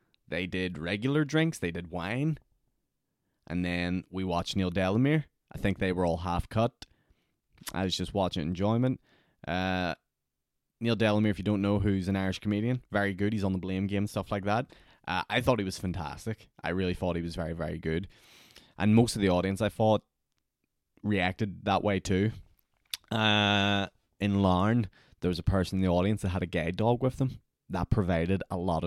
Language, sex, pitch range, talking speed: English, male, 90-110 Hz, 195 wpm